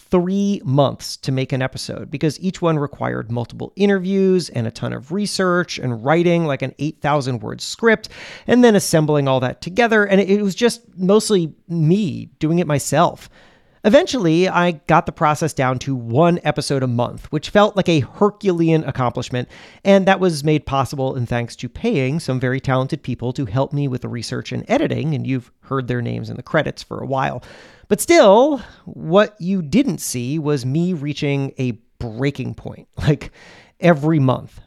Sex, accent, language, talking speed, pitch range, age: male, American, English, 180 wpm, 135-195 Hz, 40-59